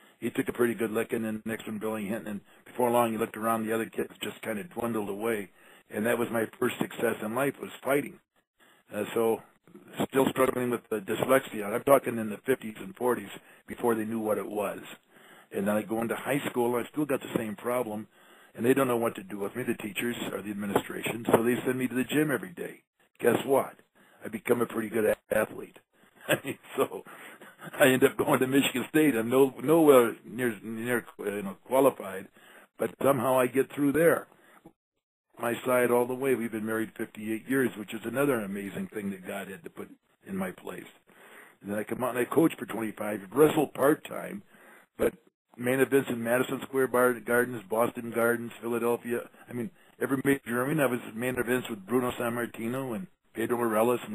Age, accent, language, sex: 50-69, American, English, male